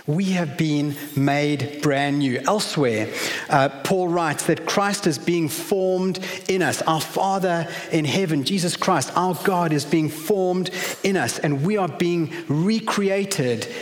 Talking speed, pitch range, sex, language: 150 wpm, 135-170 Hz, male, English